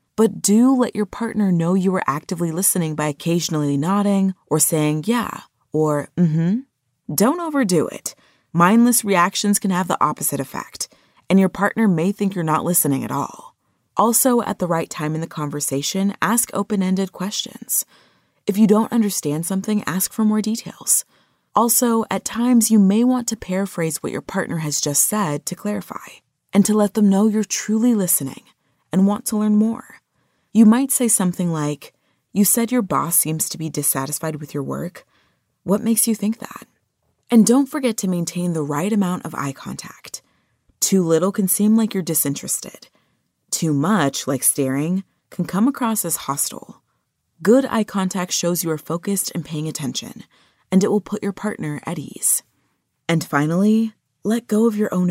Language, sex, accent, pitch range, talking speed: English, female, American, 160-215 Hz, 175 wpm